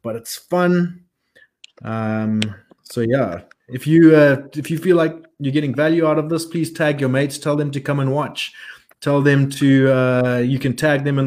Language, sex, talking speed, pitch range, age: English, male, 200 wpm, 110-145 Hz, 20-39